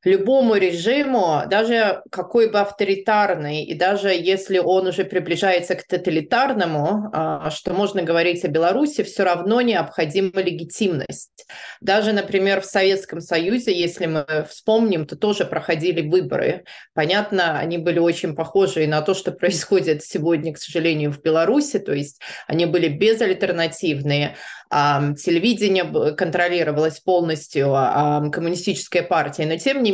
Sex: female